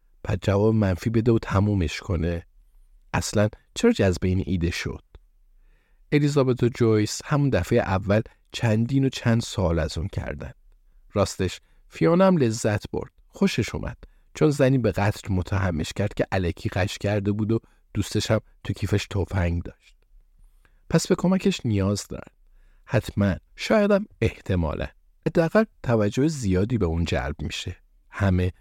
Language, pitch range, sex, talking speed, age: Persian, 85-110 Hz, male, 135 wpm, 50-69